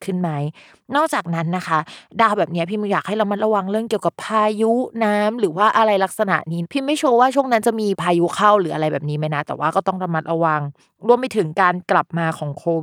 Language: Thai